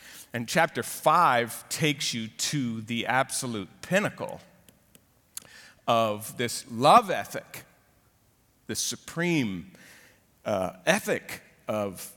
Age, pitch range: 50-69, 120-155 Hz